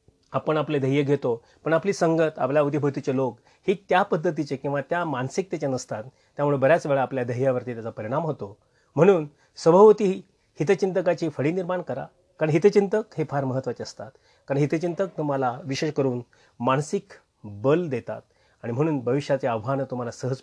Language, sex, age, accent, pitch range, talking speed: Marathi, male, 30-49, native, 125-165 Hz, 120 wpm